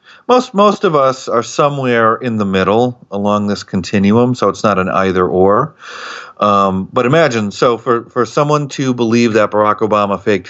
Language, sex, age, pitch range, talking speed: English, male, 40-59, 85-115 Hz, 170 wpm